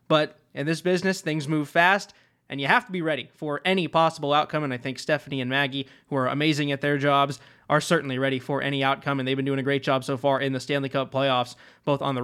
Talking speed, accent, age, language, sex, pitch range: 255 wpm, American, 20-39, English, male, 140-185 Hz